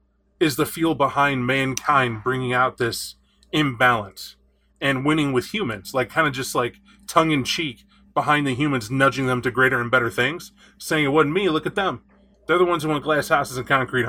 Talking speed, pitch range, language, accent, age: 190 wpm, 120-150 Hz, English, American, 20-39